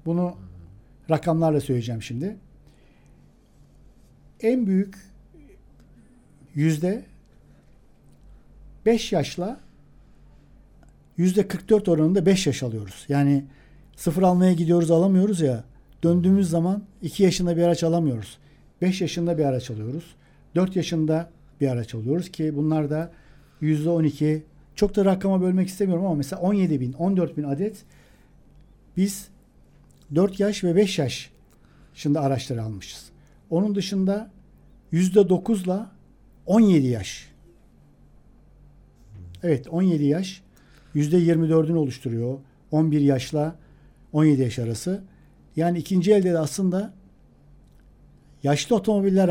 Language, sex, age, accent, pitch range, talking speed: Turkish, male, 60-79, native, 140-190 Hz, 110 wpm